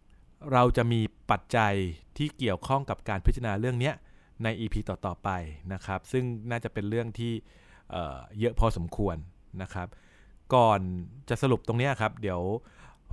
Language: Thai